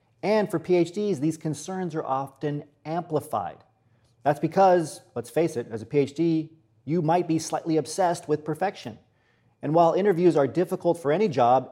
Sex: male